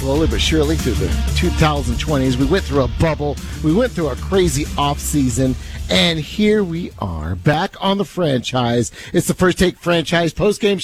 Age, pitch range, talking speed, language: 50-69, 130-190 Hz, 170 wpm, English